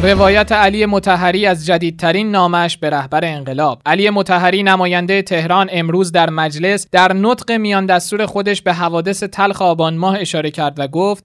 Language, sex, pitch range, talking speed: Persian, male, 170-205 Hz, 160 wpm